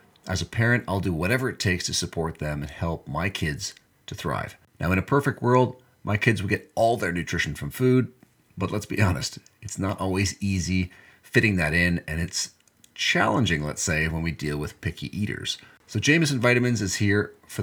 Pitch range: 85-115 Hz